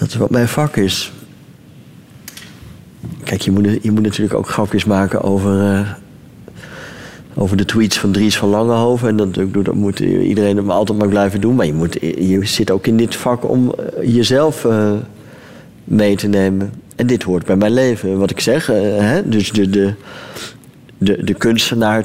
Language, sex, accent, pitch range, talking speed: Dutch, male, Dutch, 100-110 Hz, 180 wpm